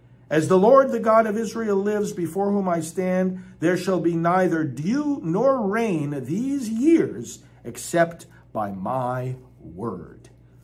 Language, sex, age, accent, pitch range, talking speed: English, male, 50-69, American, 125-175 Hz, 140 wpm